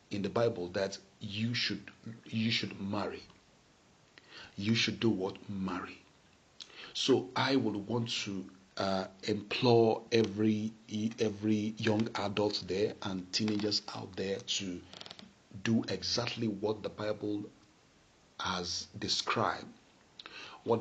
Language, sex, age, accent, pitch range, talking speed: English, male, 50-69, Nigerian, 95-110 Hz, 110 wpm